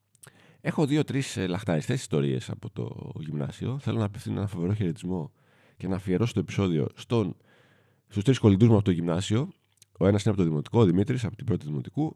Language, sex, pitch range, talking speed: Greek, male, 95-120 Hz, 185 wpm